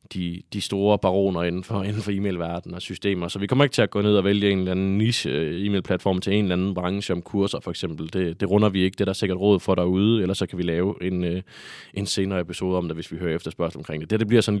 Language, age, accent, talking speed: Danish, 20-39, native, 280 wpm